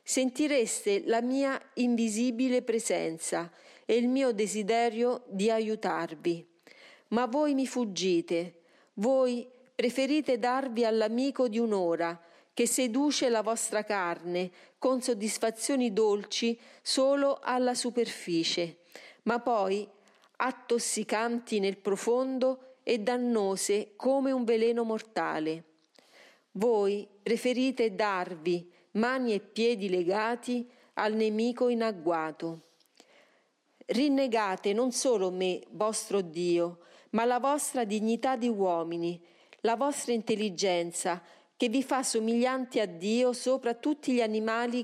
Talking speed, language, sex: 105 wpm, Italian, female